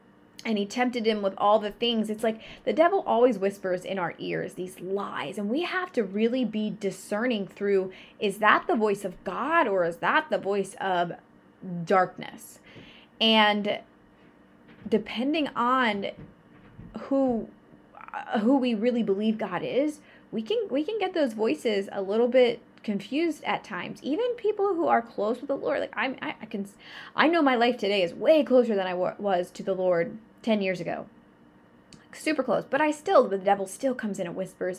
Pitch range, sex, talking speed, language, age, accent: 190-250 Hz, female, 180 wpm, English, 20-39, American